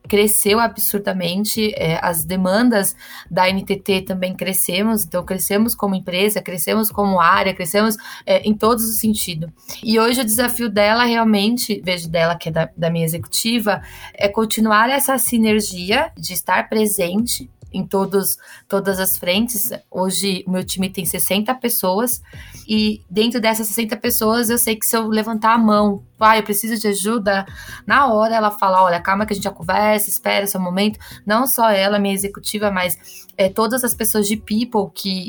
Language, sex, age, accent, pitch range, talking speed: Portuguese, female, 20-39, Brazilian, 190-225 Hz, 165 wpm